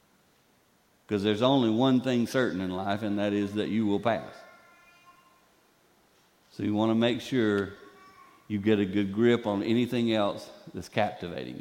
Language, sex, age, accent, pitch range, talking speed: English, male, 50-69, American, 110-185 Hz, 160 wpm